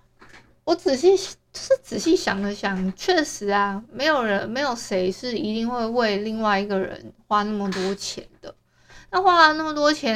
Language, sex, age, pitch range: Chinese, female, 20-39, 200-250 Hz